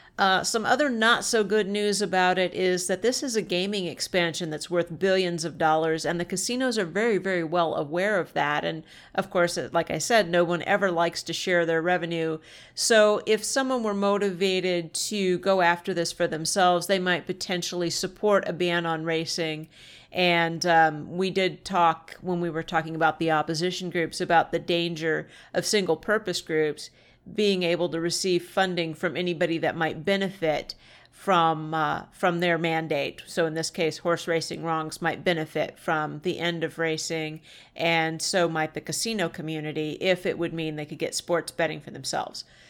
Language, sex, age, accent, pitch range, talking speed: English, female, 50-69, American, 165-190 Hz, 185 wpm